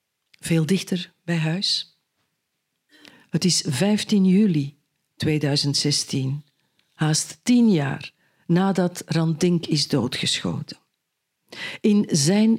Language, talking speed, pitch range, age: Dutch, 85 wpm, 150-200 Hz, 50-69